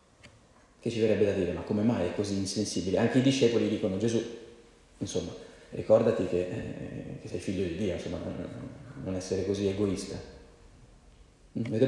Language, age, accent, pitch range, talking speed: Italian, 40-59, native, 105-135 Hz, 150 wpm